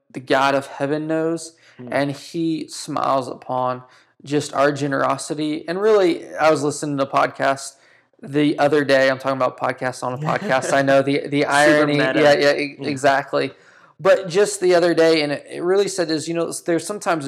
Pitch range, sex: 135-160 Hz, male